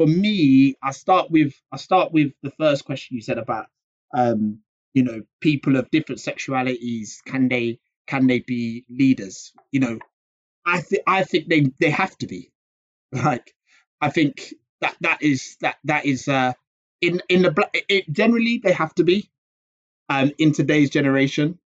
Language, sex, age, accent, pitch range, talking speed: English, male, 20-39, British, 130-165 Hz, 170 wpm